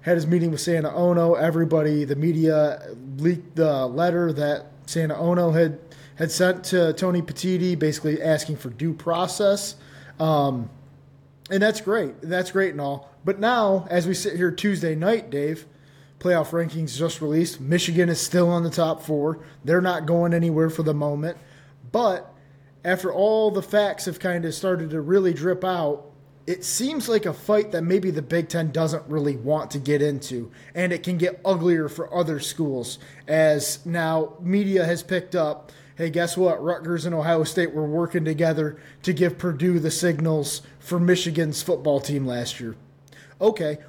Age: 20-39